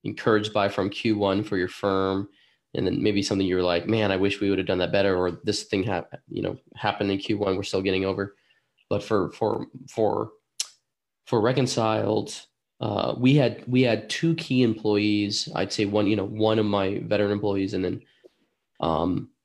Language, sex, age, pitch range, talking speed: English, male, 20-39, 95-110 Hz, 195 wpm